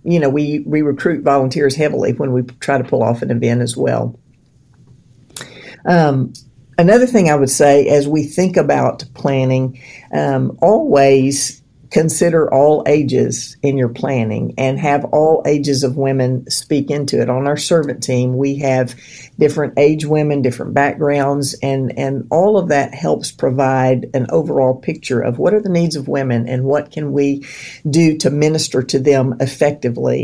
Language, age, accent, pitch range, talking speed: English, 50-69, American, 130-155 Hz, 165 wpm